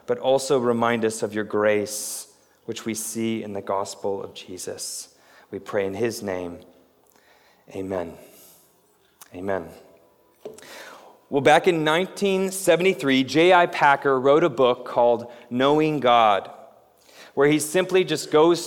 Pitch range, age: 120-170 Hz, 30-49